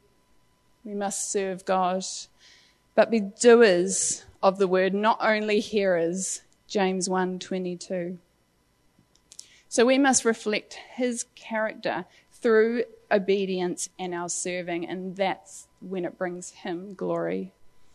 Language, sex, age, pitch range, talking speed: English, female, 20-39, 195-245 Hz, 115 wpm